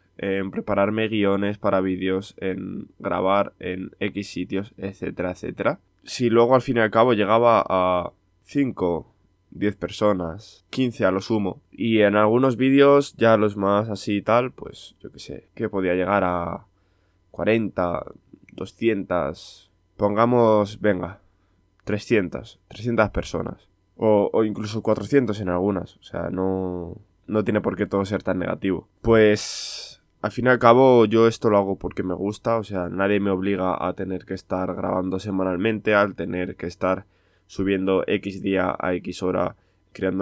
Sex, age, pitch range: male, 20-39, 95-110 Hz